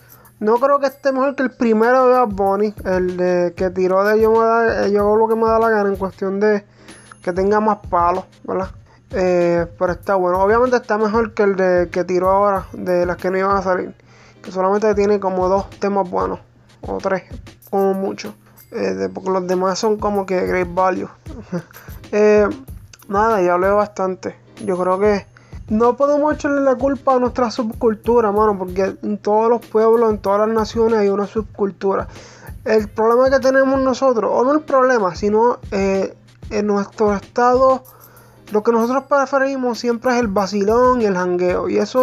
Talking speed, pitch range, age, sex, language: 185 wpm, 190-245 Hz, 20-39, male, English